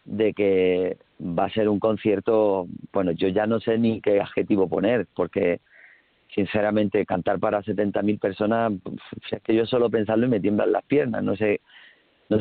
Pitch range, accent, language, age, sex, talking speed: 100-115 Hz, Spanish, Spanish, 40-59, male, 170 wpm